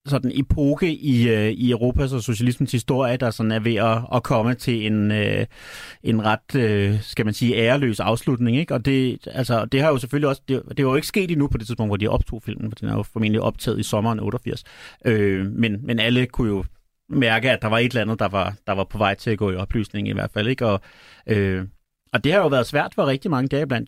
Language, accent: Danish, native